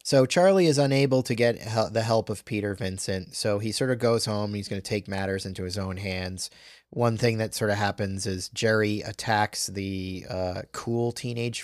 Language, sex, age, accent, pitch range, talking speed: English, male, 30-49, American, 95-115 Hz, 205 wpm